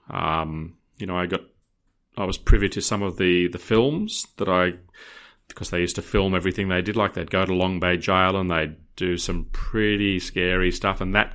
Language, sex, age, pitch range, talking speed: English, male, 30-49, 90-110 Hz, 210 wpm